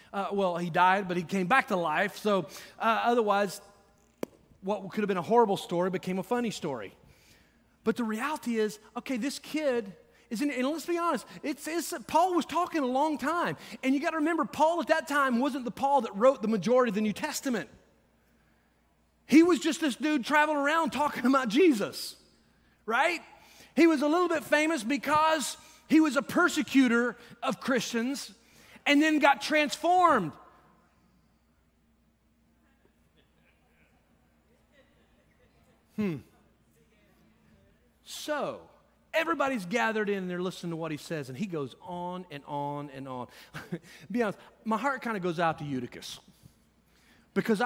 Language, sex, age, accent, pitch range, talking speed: English, male, 30-49, American, 185-285 Hz, 155 wpm